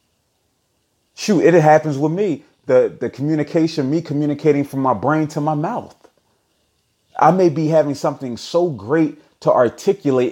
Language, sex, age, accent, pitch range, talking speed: English, male, 30-49, American, 115-155 Hz, 145 wpm